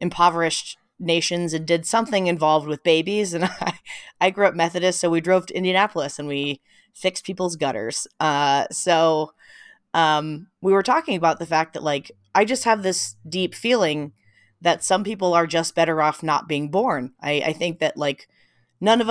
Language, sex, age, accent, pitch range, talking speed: English, female, 20-39, American, 150-185 Hz, 180 wpm